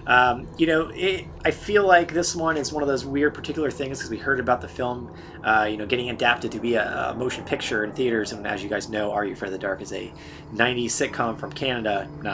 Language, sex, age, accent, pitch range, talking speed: English, male, 30-49, American, 110-145 Hz, 260 wpm